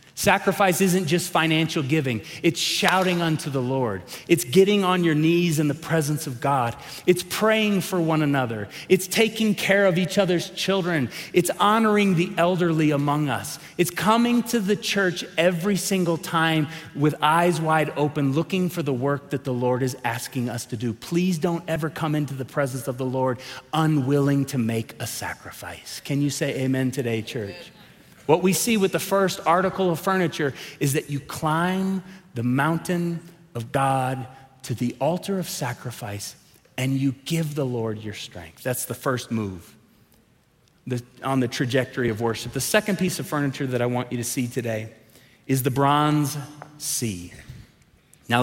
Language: English